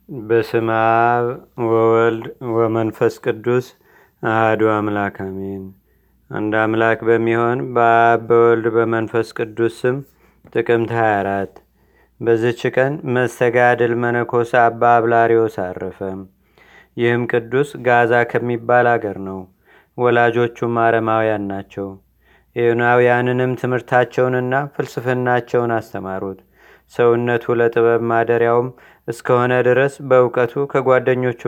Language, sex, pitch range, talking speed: Amharic, male, 115-125 Hz, 80 wpm